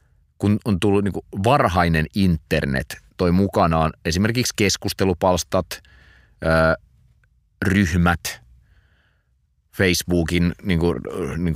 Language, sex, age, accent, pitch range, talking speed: Finnish, male, 30-49, native, 75-90 Hz, 80 wpm